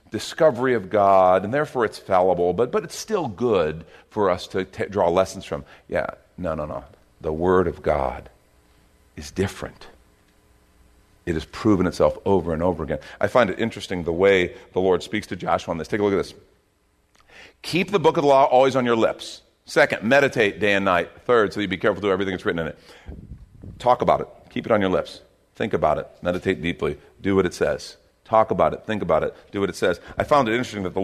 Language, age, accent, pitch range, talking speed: English, 40-59, American, 85-115 Hz, 220 wpm